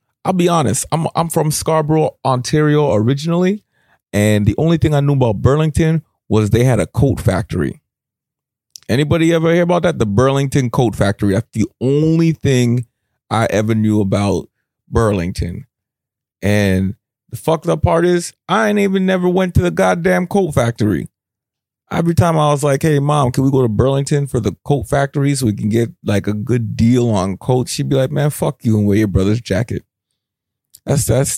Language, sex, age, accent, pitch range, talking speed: English, male, 30-49, American, 105-140 Hz, 185 wpm